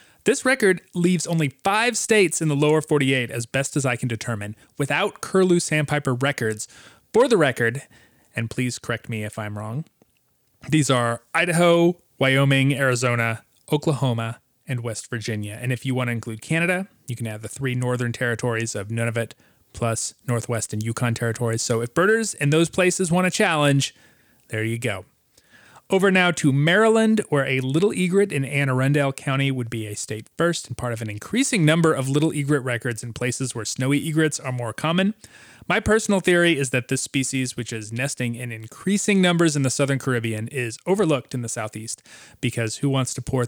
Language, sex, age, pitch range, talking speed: English, male, 30-49, 115-155 Hz, 185 wpm